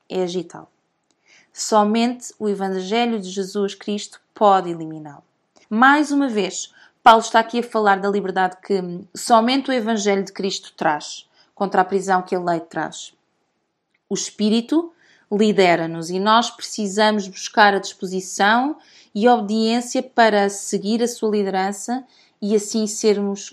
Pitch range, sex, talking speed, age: 185-230 Hz, female, 135 wpm, 20-39